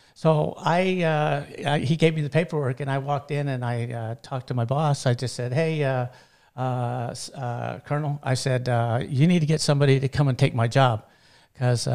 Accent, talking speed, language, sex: American, 215 wpm, English, male